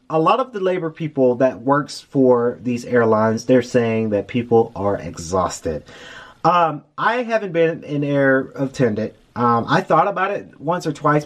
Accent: American